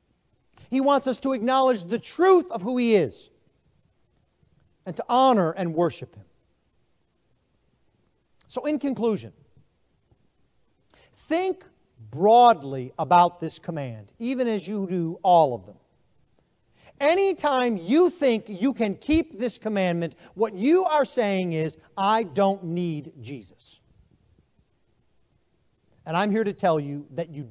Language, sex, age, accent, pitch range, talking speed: English, male, 40-59, American, 155-255 Hz, 125 wpm